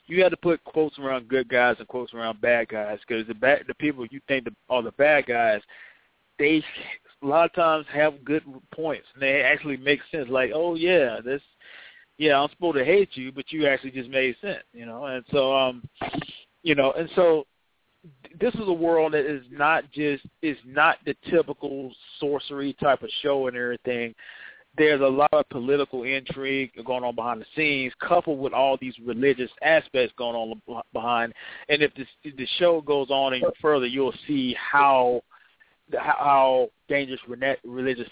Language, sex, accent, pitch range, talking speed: English, male, American, 120-150 Hz, 180 wpm